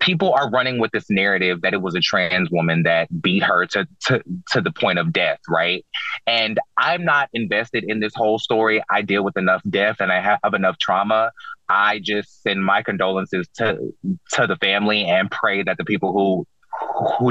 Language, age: English, 20-39